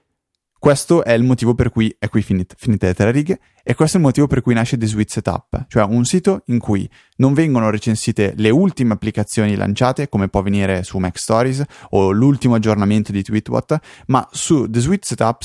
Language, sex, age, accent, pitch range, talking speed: Italian, male, 20-39, native, 100-130 Hz, 190 wpm